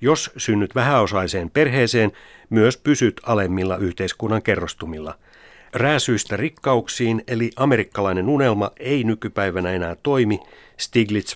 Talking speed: 100 wpm